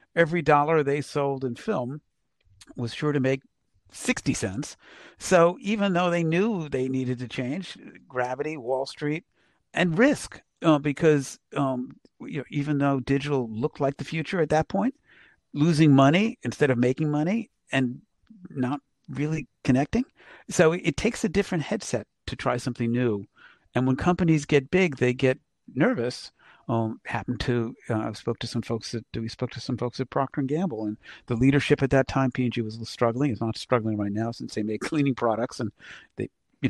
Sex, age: male, 50-69